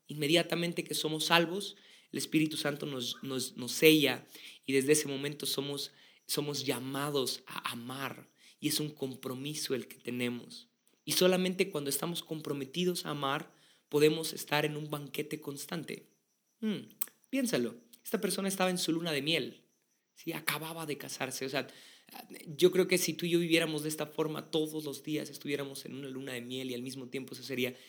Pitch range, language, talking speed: 130-155 Hz, Spanish, 175 wpm